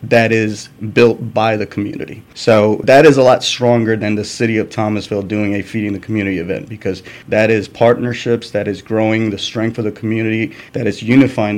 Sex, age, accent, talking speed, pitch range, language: male, 30-49, American, 195 wpm, 105-120 Hz, English